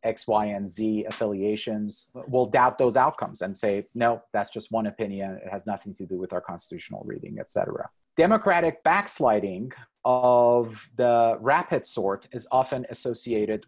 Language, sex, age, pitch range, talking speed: English, male, 30-49, 100-120 Hz, 160 wpm